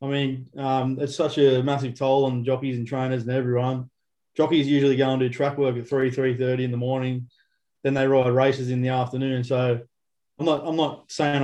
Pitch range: 130-145 Hz